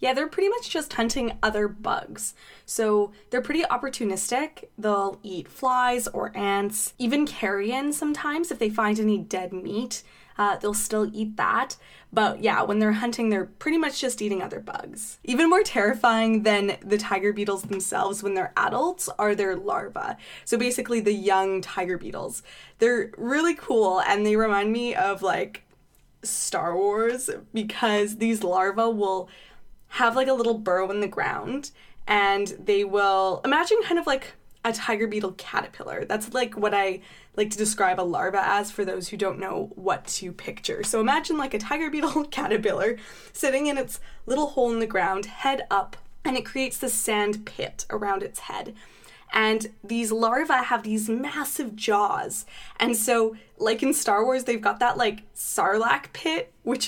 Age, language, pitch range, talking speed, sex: 20-39, English, 200-255 Hz, 170 wpm, female